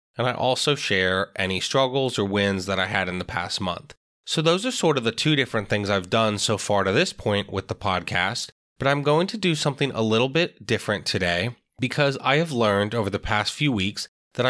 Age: 20-39